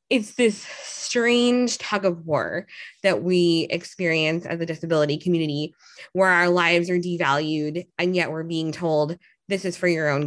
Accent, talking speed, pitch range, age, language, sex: American, 165 wpm, 165-195 Hz, 20-39, English, female